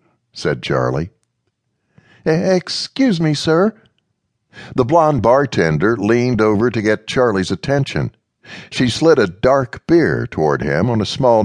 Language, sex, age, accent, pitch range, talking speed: English, male, 60-79, American, 95-135 Hz, 125 wpm